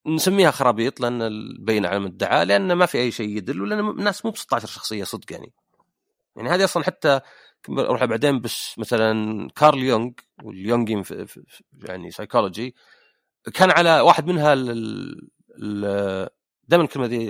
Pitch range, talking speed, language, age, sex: 105-145 Hz, 155 wpm, Arabic, 30-49, male